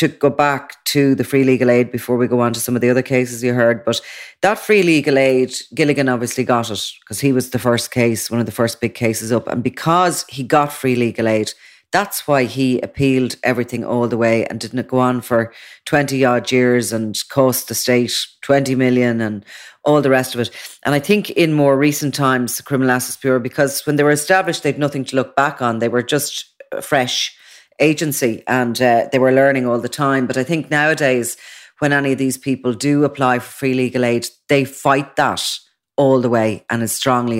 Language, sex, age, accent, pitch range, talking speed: English, female, 30-49, Irish, 115-135 Hz, 220 wpm